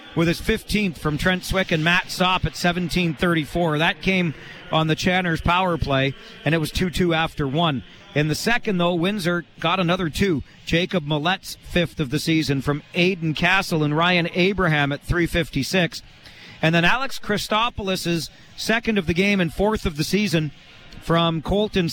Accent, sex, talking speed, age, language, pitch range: American, male, 170 wpm, 40-59, English, 155-185 Hz